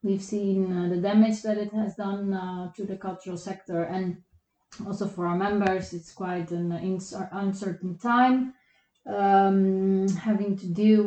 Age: 30-49